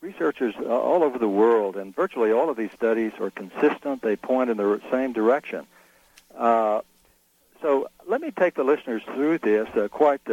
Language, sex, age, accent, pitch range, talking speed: English, male, 60-79, American, 105-130 Hz, 175 wpm